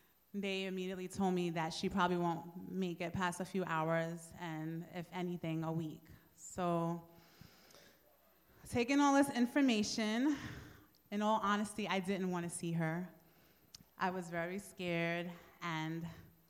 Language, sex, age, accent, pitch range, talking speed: English, female, 30-49, American, 165-195 Hz, 140 wpm